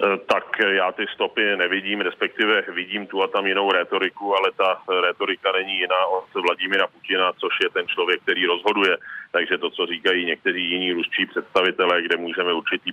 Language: Czech